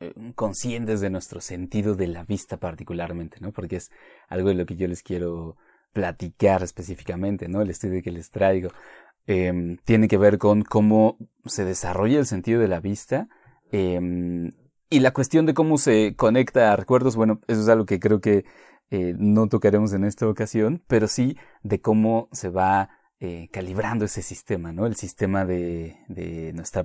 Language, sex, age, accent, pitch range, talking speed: Spanish, male, 30-49, Mexican, 90-110 Hz, 175 wpm